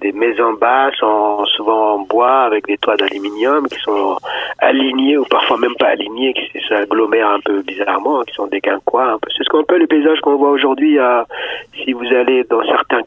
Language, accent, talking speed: French, French, 205 wpm